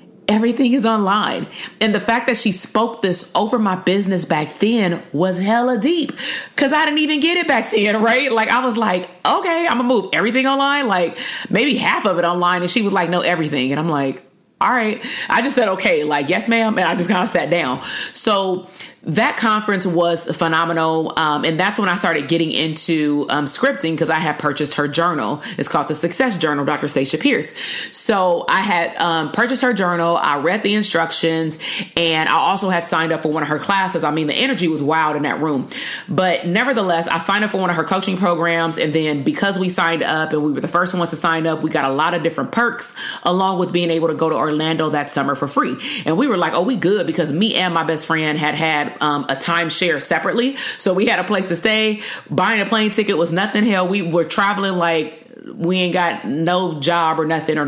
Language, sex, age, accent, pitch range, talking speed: English, female, 40-59, American, 160-220 Hz, 230 wpm